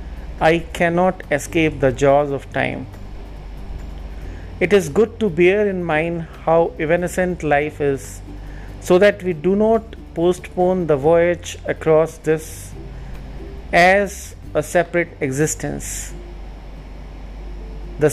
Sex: male